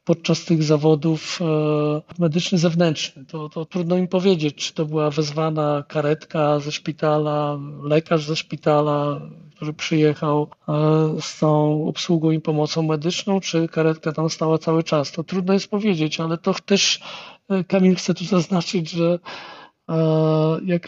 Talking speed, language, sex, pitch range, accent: 135 wpm, Polish, male, 155-180 Hz, native